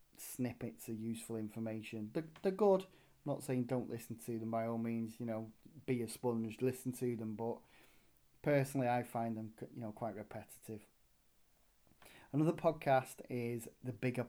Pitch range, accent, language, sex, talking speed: 115-135 Hz, British, English, male, 165 wpm